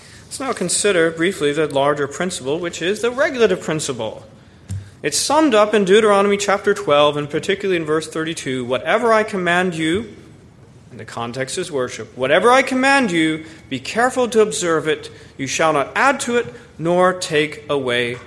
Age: 40-59